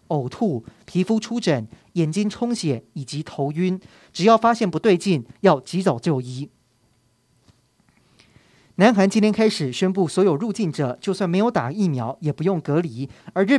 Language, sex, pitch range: Chinese, male, 145-195 Hz